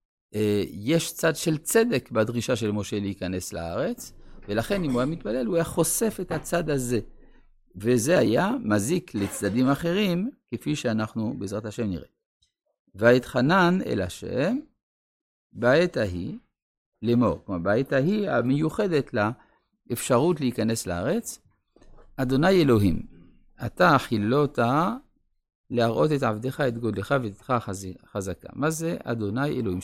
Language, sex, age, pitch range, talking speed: Hebrew, male, 50-69, 105-155 Hz, 120 wpm